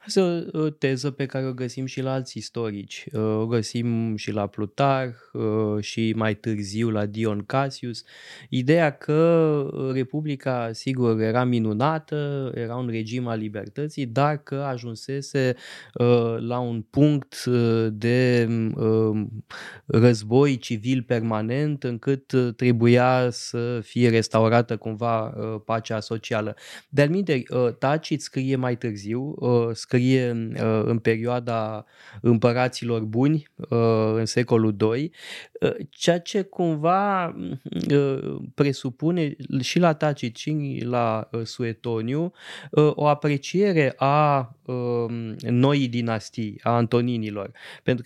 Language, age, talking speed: Romanian, 20-39, 115 wpm